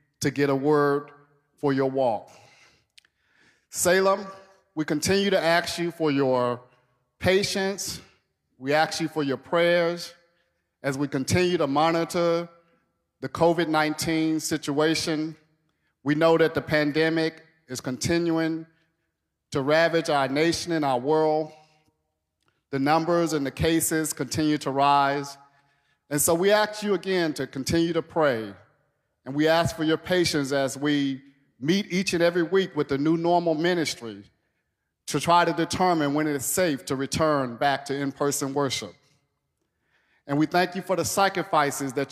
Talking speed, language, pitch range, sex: 145 wpm, English, 140-170 Hz, male